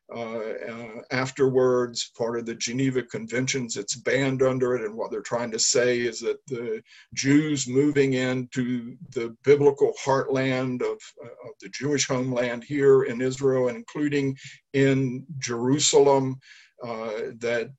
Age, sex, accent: 50-69, male, American